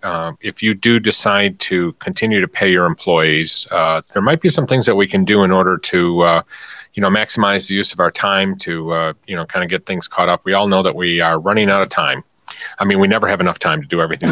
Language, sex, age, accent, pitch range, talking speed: English, male, 40-59, American, 85-110 Hz, 265 wpm